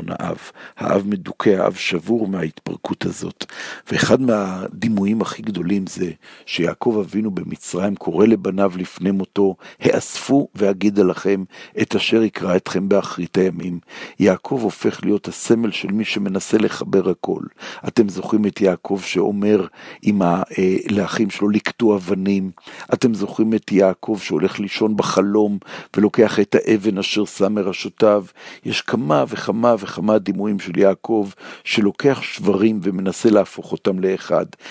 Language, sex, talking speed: Hebrew, male, 125 wpm